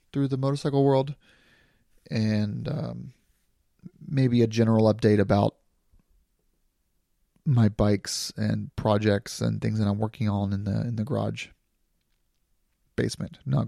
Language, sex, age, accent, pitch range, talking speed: English, male, 30-49, American, 105-125 Hz, 125 wpm